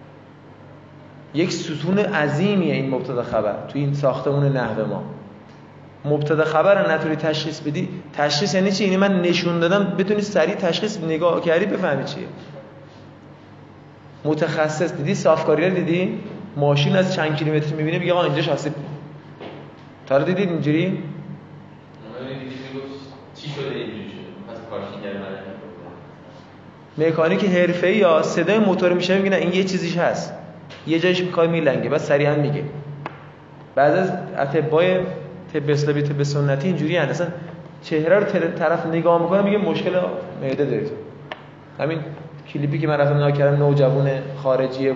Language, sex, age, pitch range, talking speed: Persian, male, 20-39, 145-180 Hz, 125 wpm